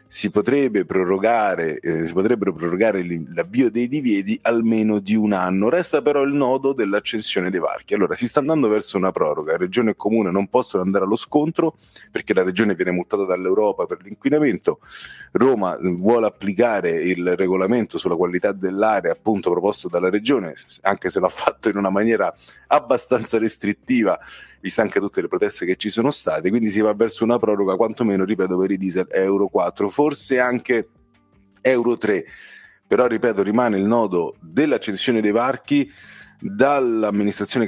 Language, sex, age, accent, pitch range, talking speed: Italian, male, 30-49, native, 95-125 Hz, 160 wpm